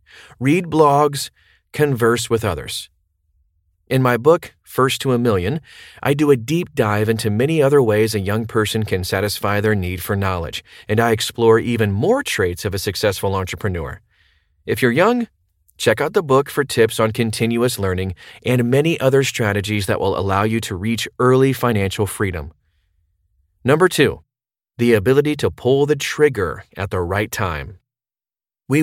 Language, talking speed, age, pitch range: English, 160 wpm, 30-49, 95-130 Hz